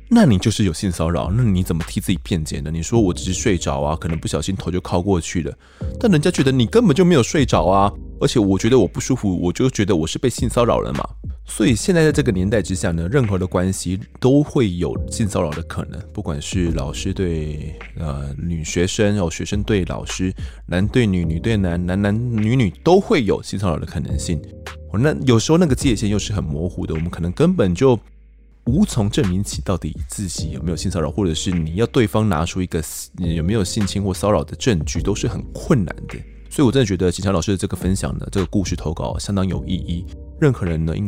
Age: 20-39